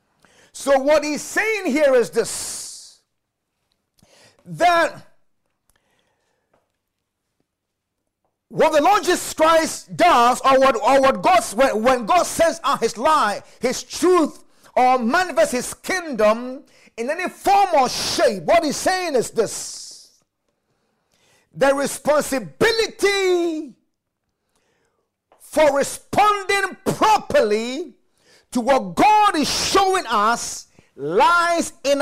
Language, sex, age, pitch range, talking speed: English, male, 50-69, 270-345 Hz, 105 wpm